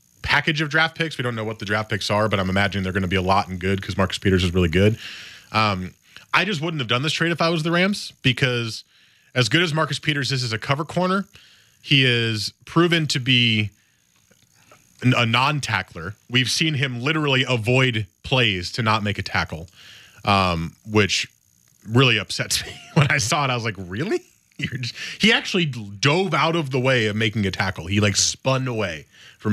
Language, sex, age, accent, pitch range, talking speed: English, male, 30-49, American, 100-130 Hz, 205 wpm